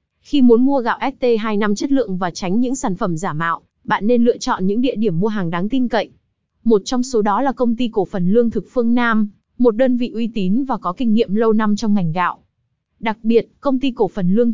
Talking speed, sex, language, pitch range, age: 250 wpm, female, Vietnamese, 210-250 Hz, 20-39